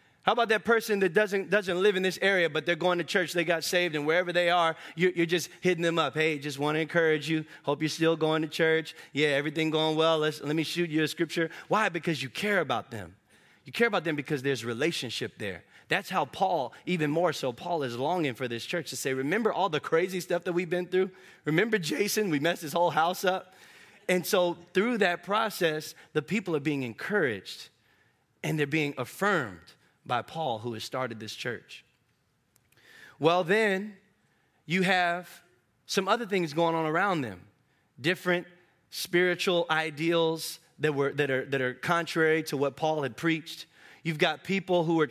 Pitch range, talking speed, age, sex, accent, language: 155-185 Hz, 195 wpm, 20-39, male, American, English